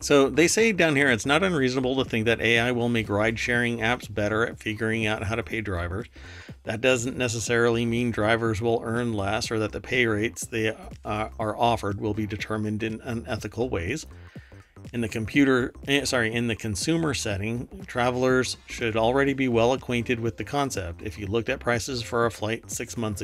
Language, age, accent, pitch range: English, 40-59, American, 100-120 Hz